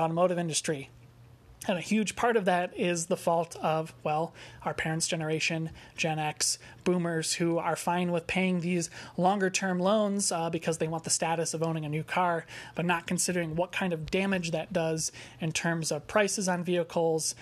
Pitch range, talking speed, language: 155-190 Hz, 185 wpm, English